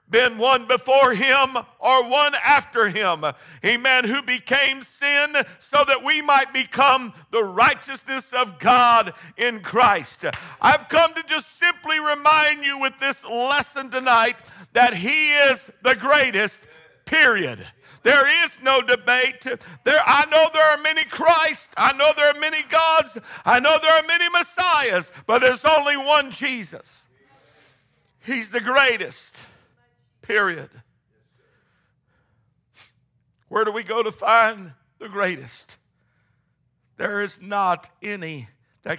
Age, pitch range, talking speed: 50-69, 200-280 Hz, 130 wpm